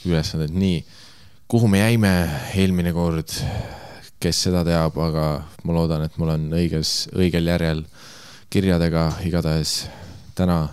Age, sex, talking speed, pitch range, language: 20-39, male, 130 wpm, 80-95 Hz, English